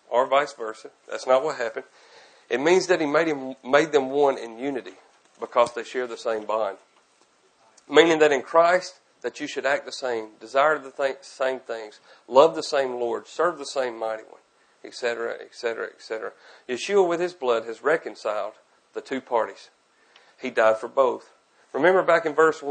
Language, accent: English, American